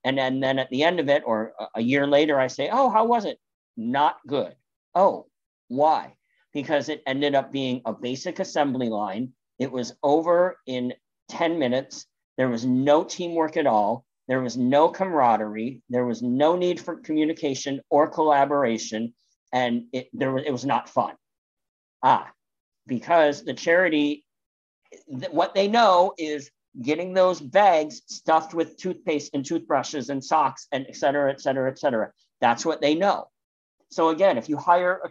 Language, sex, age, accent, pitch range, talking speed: English, male, 50-69, American, 130-175 Hz, 165 wpm